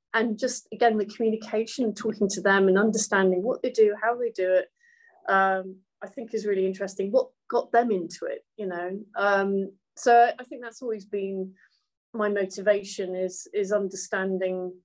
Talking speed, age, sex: 170 wpm, 30-49, female